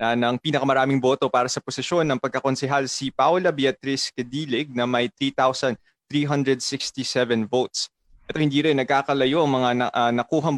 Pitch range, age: 125-140 Hz, 20-39